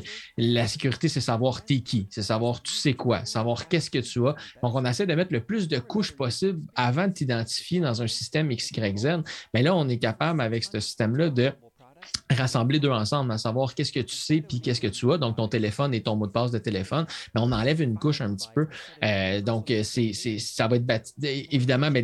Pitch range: 115-140 Hz